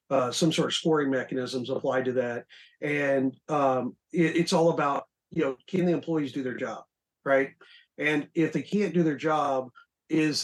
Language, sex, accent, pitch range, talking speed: English, male, American, 130-160 Hz, 185 wpm